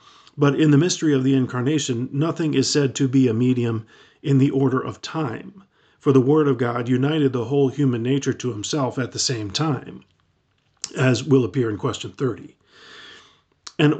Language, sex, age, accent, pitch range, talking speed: English, male, 40-59, American, 125-150 Hz, 180 wpm